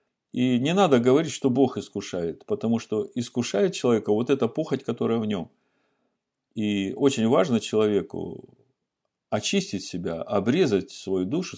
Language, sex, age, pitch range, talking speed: Russian, male, 50-69, 95-125 Hz, 135 wpm